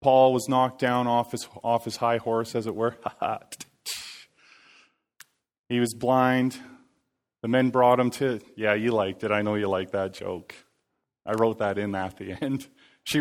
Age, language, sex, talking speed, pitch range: 30-49, English, male, 175 wpm, 110-130 Hz